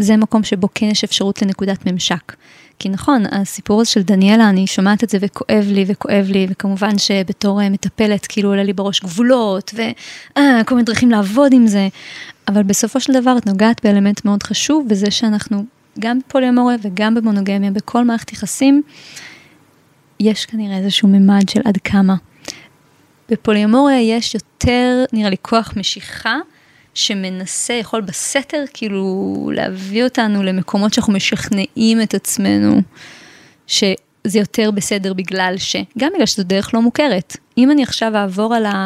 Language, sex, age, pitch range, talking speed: Hebrew, female, 20-39, 195-235 Hz, 150 wpm